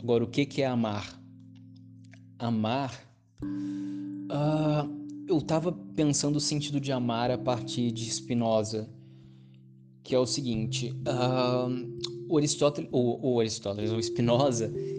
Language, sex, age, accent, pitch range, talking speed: Portuguese, male, 20-39, Brazilian, 115-130 Hz, 110 wpm